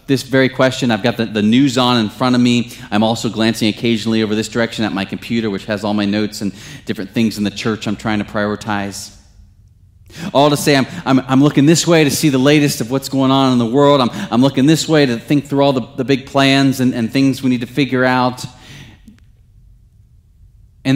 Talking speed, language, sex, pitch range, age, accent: 230 wpm, English, male, 100-125 Hz, 30-49, American